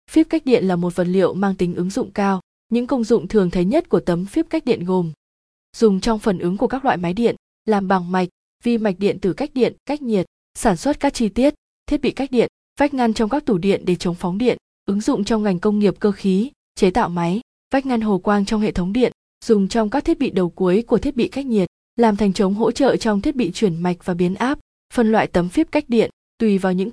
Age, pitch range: 20-39, 185-235 Hz